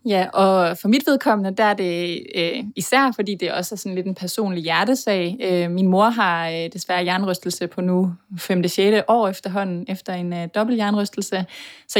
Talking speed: 170 wpm